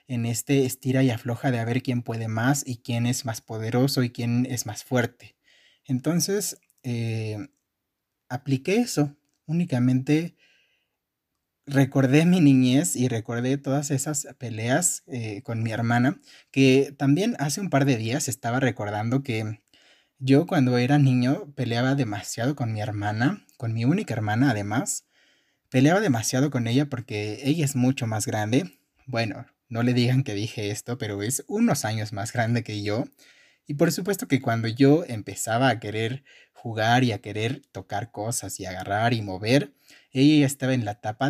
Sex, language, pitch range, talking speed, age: male, Spanish, 115-140 Hz, 160 wpm, 30-49